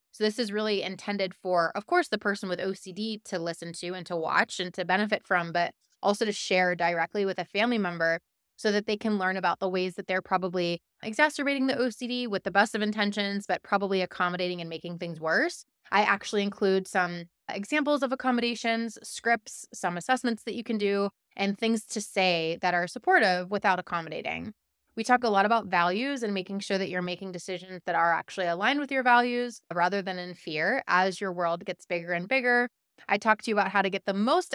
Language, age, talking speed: English, 20-39, 210 wpm